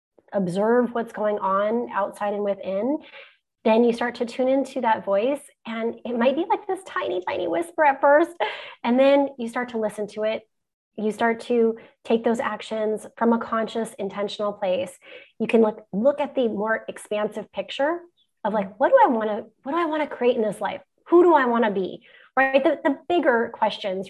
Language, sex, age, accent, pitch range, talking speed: English, female, 20-39, American, 210-270 Hz, 200 wpm